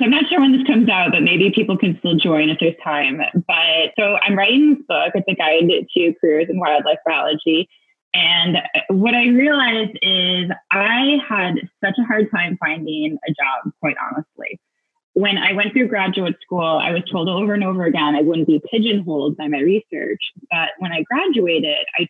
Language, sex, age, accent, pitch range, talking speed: English, female, 20-39, American, 160-215 Hz, 195 wpm